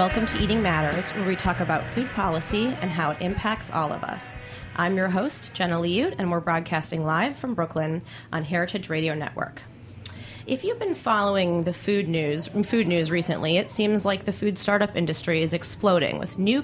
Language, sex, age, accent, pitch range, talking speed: English, female, 30-49, American, 160-205 Hz, 190 wpm